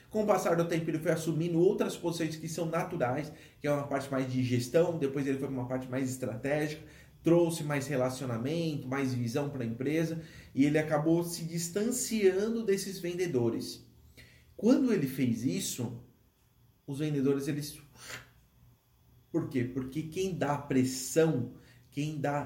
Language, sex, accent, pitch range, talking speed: Portuguese, male, Brazilian, 130-160 Hz, 150 wpm